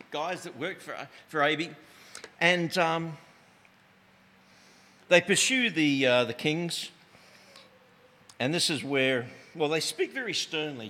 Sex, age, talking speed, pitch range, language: male, 50-69, 125 wpm, 135-200 Hz, English